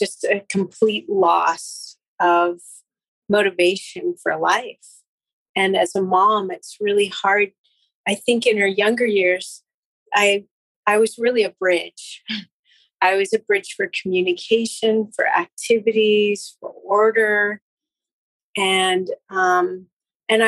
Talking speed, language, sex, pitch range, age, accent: 115 wpm, English, female, 195-240 Hz, 40-59, American